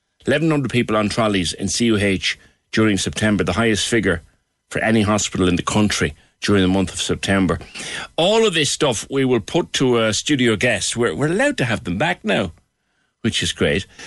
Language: English